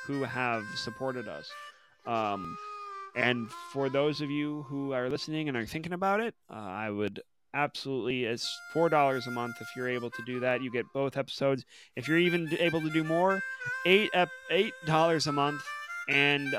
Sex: male